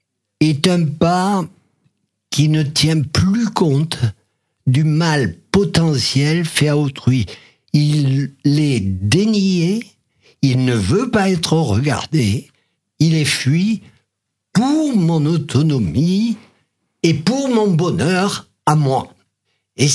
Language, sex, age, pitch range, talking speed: French, male, 60-79, 120-160 Hz, 110 wpm